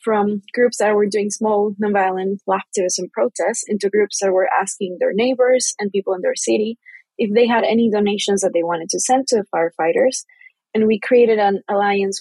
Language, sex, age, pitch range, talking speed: English, female, 20-39, 185-225 Hz, 190 wpm